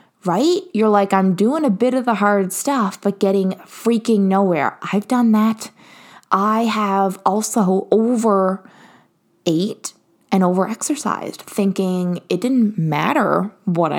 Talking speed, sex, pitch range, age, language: 130 wpm, female, 185-225 Hz, 20-39, English